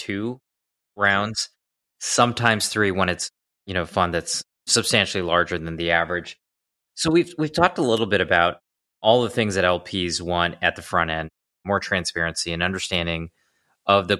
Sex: male